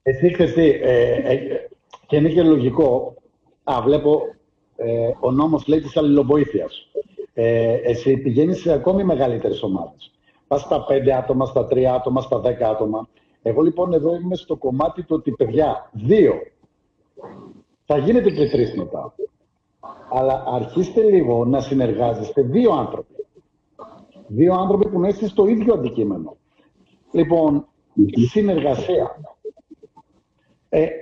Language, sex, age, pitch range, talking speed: Greek, male, 50-69, 135-205 Hz, 125 wpm